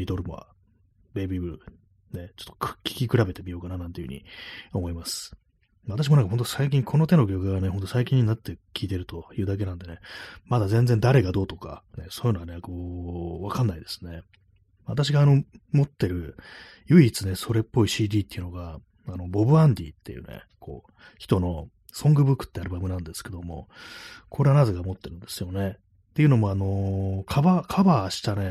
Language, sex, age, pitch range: Japanese, male, 30-49, 90-115 Hz